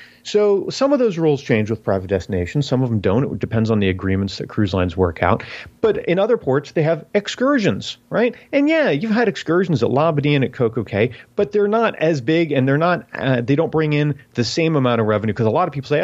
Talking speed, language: 245 wpm, English